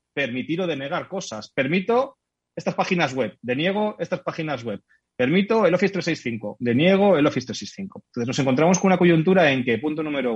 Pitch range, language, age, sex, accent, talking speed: 125-170 Hz, Spanish, 30-49, male, Spanish, 175 wpm